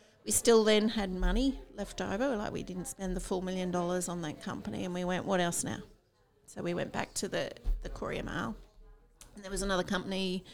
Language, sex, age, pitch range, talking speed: English, female, 40-59, 180-205 Hz, 215 wpm